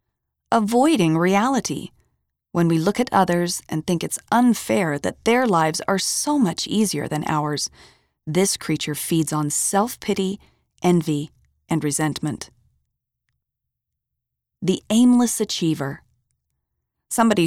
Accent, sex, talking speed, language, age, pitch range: American, female, 110 wpm, English, 30-49, 150-205 Hz